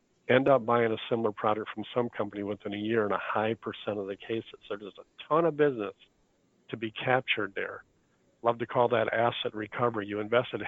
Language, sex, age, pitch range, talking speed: English, male, 50-69, 110-120 Hz, 200 wpm